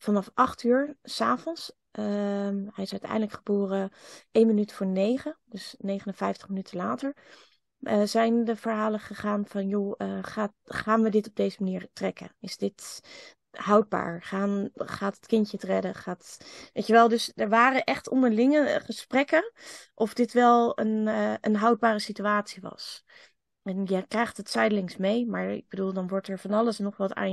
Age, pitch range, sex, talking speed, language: 20-39, 195-230 Hz, female, 175 wpm, Dutch